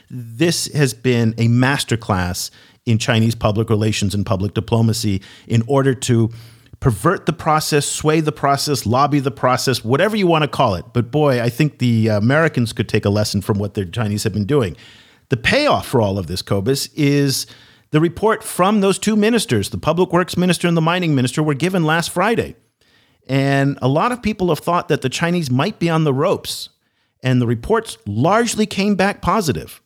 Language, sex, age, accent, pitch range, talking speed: English, male, 50-69, American, 120-160 Hz, 190 wpm